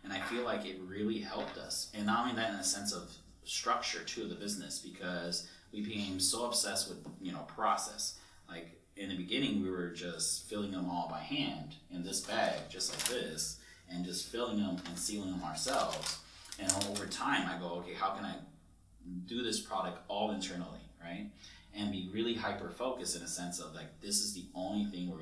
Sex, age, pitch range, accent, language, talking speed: male, 30-49, 85-100 Hz, American, English, 210 wpm